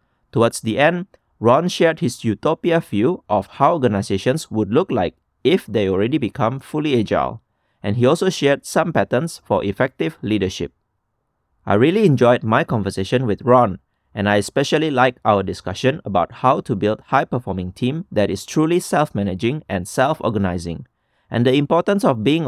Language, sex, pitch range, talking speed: English, male, 100-150 Hz, 160 wpm